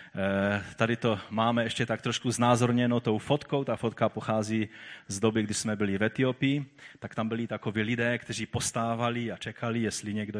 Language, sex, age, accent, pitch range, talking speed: Czech, male, 30-49, native, 110-150 Hz, 175 wpm